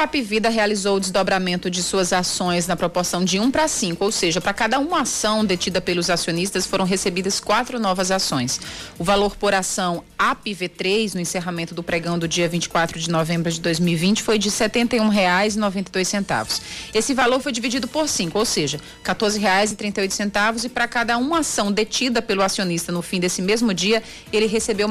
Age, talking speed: 30-49, 185 wpm